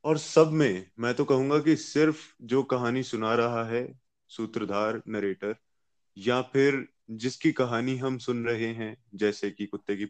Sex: male